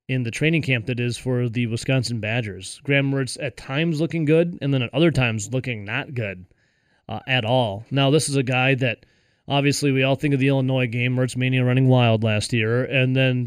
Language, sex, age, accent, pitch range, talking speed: English, male, 30-49, American, 125-150 Hz, 220 wpm